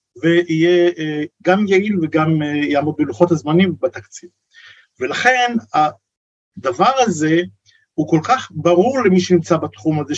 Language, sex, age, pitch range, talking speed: Hebrew, male, 50-69, 150-210 Hz, 125 wpm